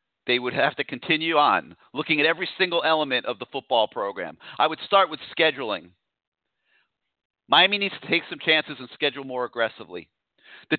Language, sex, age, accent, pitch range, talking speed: English, male, 40-59, American, 150-185 Hz, 170 wpm